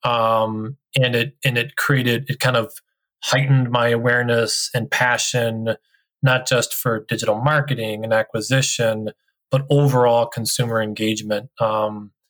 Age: 20-39